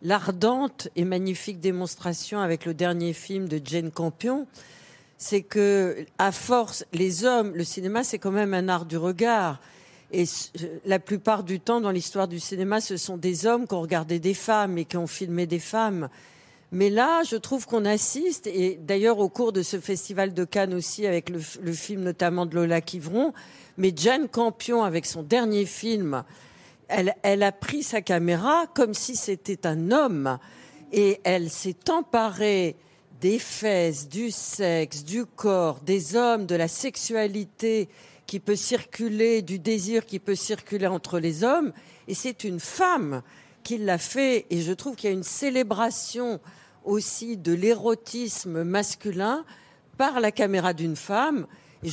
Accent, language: French, French